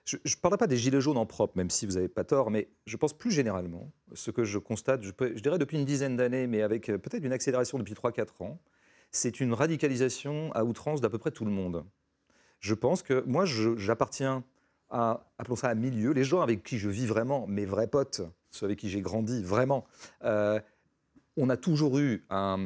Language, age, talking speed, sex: French, 40-59, 220 wpm, male